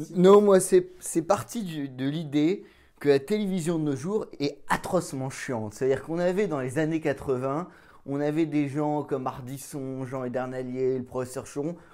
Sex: male